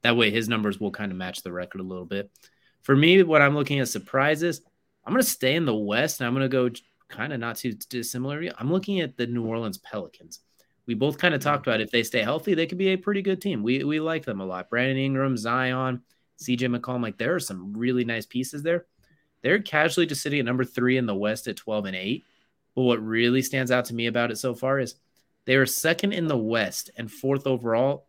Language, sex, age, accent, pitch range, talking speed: English, male, 30-49, American, 105-135 Hz, 245 wpm